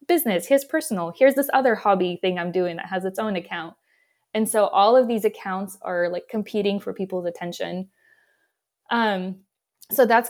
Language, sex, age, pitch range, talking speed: English, female, 20-39, 190-225 Hz, 175 wpm